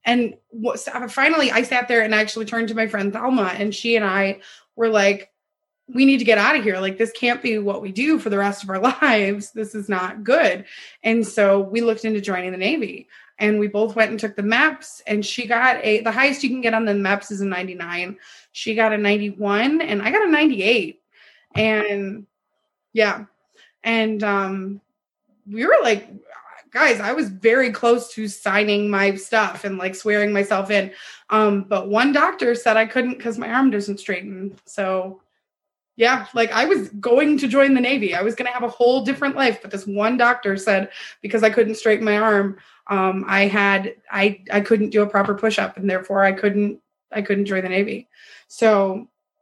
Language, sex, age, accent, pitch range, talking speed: English, female, 20-39, American, 200-245 Hz, 200 wpm